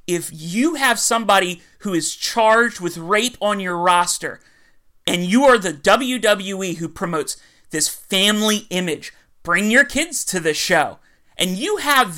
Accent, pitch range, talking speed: American, 165-210 Hz, 155 wpm